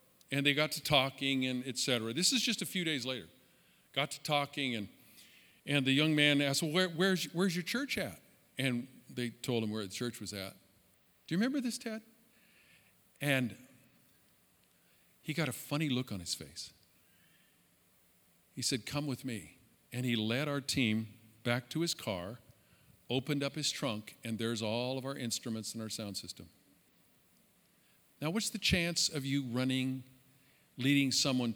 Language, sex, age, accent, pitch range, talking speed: English, male, 50-69, American, 110-150 Hz, 175 wpm